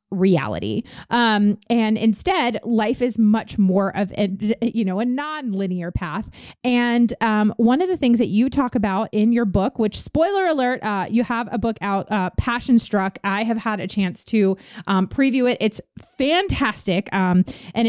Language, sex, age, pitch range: English, female, 30-49, 185-235 Hz